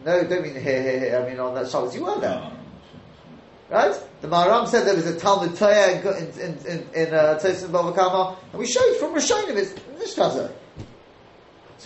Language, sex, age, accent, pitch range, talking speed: English, male, 30-49, British, 160-235 Hz, 180 wpm